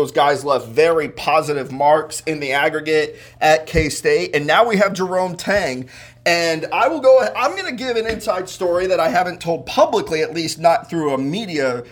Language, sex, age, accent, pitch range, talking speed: English, male, 30-49, American, 145-195 Hz, 205 wpm